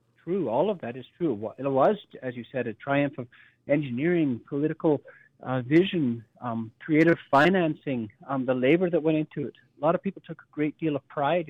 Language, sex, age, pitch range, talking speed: English, male, 40-59, 125-160 Hz, 195 wpm